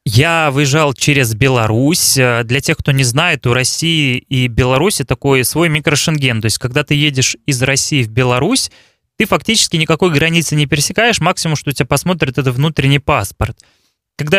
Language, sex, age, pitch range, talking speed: Russian, male, 20-39, 130-165 Hz, 165 wpm